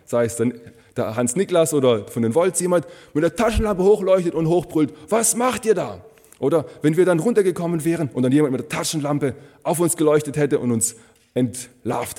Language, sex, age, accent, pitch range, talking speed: German, male, 30-49, German, 115-160 Hz, 190 wpm